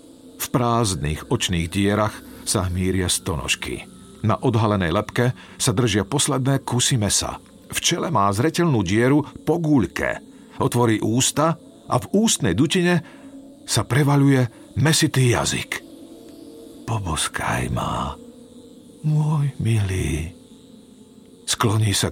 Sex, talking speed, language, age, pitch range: male, 105 wpm, Slovak, 50-69, 105-145 Hz